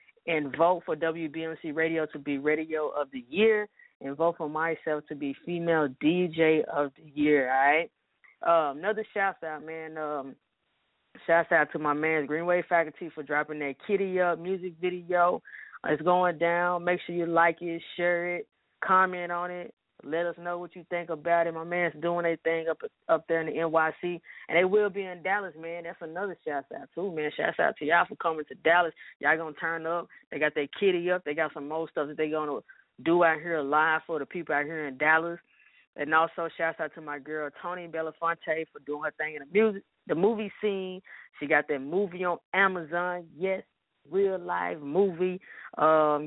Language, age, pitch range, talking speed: English, 20-39, 155-180 Hz, 200 wpm